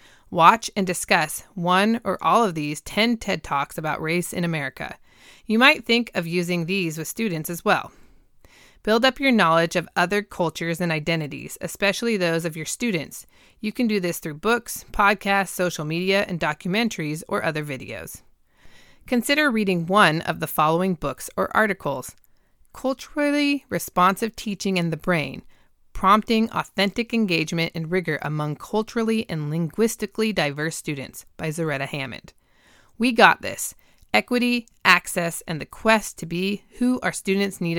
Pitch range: 160-210 Hz